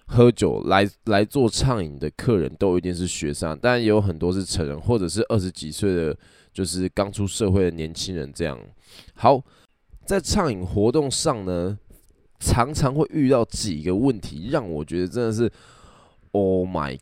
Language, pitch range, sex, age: Chinese, 85-115 Hz, male, 10-29